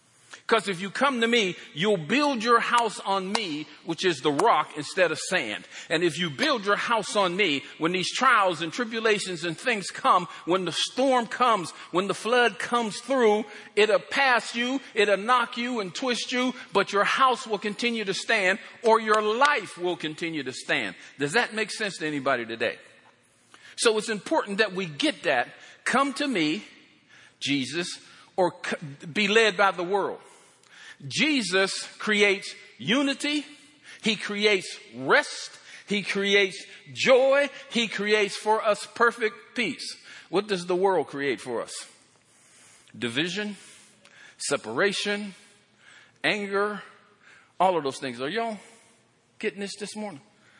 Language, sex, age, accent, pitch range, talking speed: English, male, 50-69, American, 190-240 Hz, 150 wpm